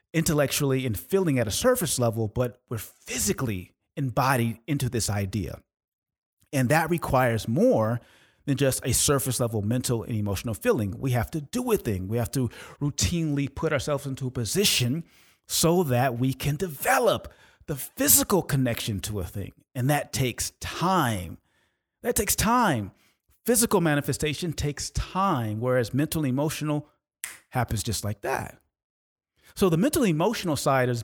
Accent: American